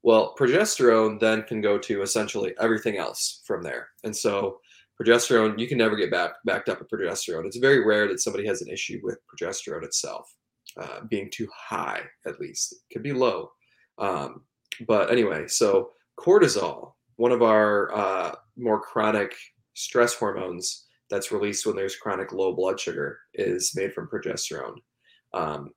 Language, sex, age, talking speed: English, male, 20-39, 165 wpm